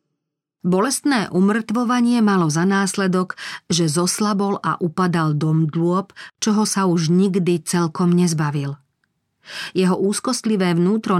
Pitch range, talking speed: 160-205 Hz, 105 wpm